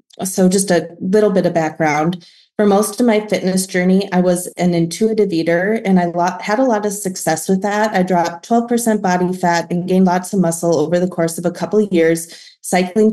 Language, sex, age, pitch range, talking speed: English, female, 20-39, 170-195 Hz, 210 wpm